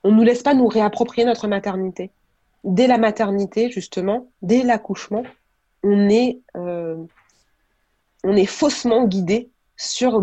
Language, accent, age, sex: French, French, 20-39, female